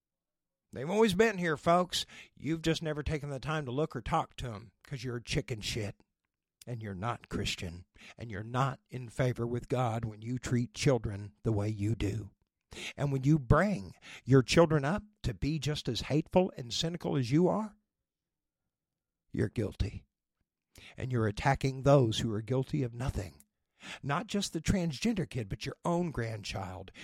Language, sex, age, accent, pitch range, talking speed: English, male, 60-79, American, 110-155 Hz, 175 wpm